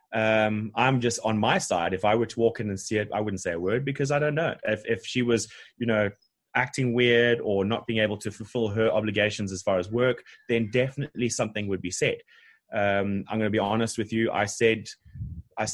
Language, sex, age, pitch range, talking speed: English, male, 20-39, 100-120 Hz, 235 wpm